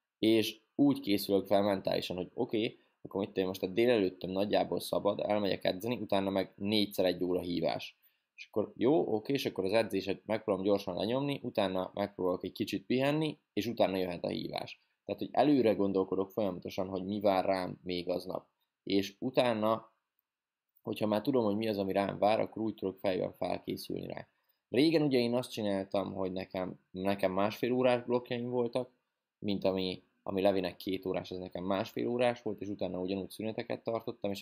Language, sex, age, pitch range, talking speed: Hungarian, male, 20-39, 95-110 Hz, 180 wpm